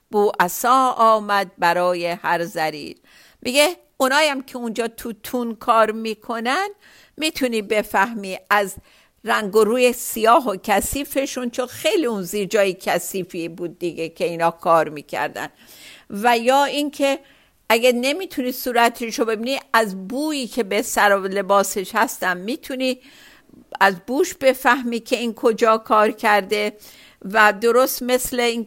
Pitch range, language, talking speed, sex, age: 195-245 Hz, Persian, 135 wpm, female, 50-69